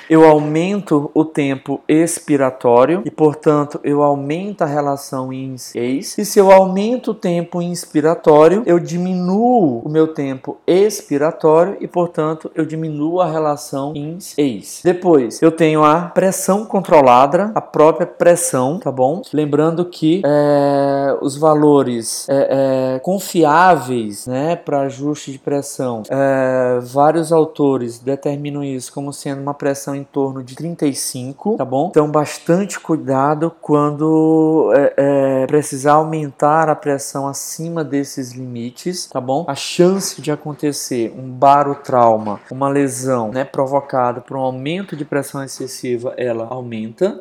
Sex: male